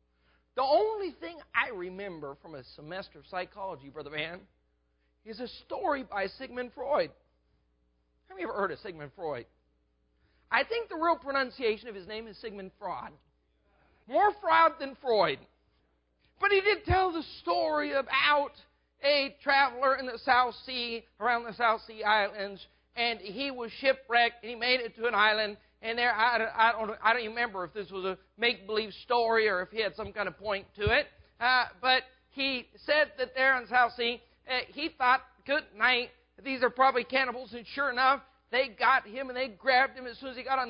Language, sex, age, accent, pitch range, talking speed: English, male, 40-59, American, 205-265 Hz, 190 wpm